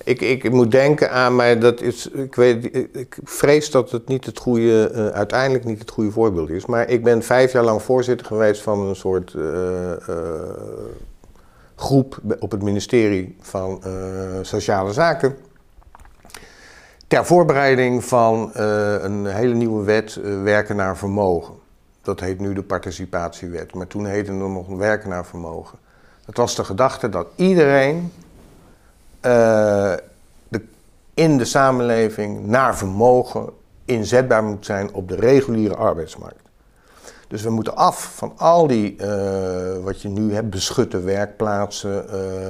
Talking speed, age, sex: 150 wpm, 50-69, male